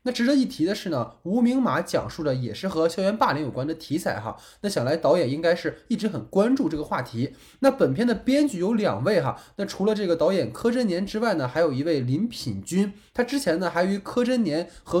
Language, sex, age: Chinese, male, 20-39